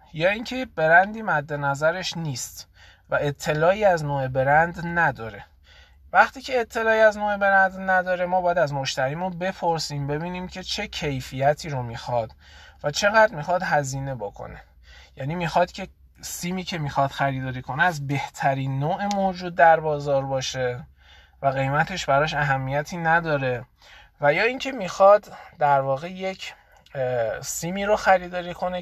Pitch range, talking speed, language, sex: 130-185 Hz, 135 wpm, Persian, male